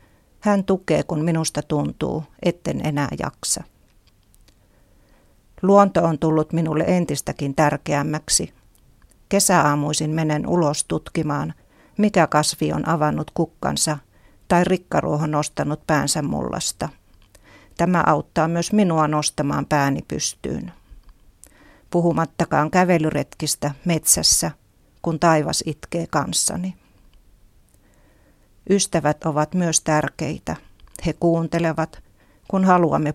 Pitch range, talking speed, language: 145-170 Hz, 90 wpm, Finnish